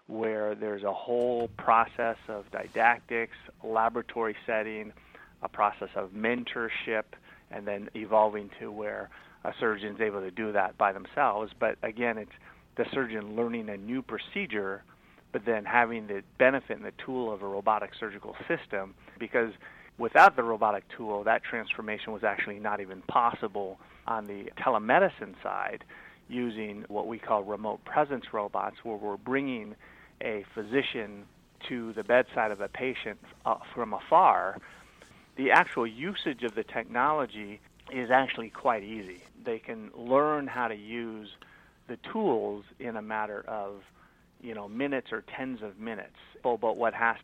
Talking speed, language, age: 150 wpm, English, 30-49